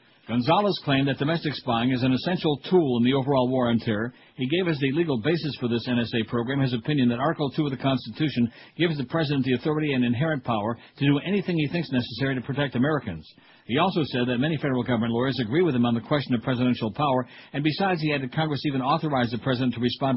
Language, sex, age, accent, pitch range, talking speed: English, male, 60-79, American, 120-145 Hz, 230 wpm